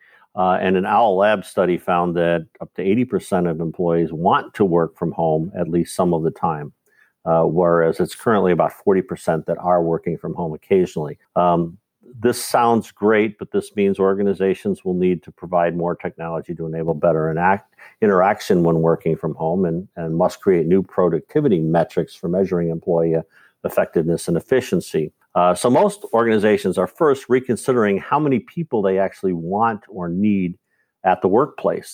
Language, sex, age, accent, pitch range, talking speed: English, male, 50-69, American, 85-100 Hz, 165 wpm